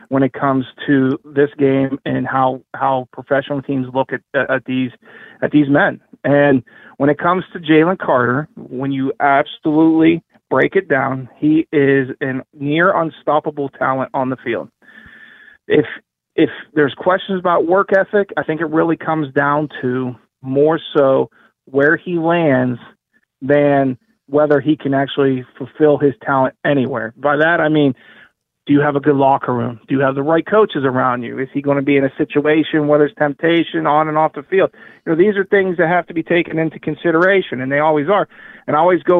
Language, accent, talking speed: English, American, 185 wpm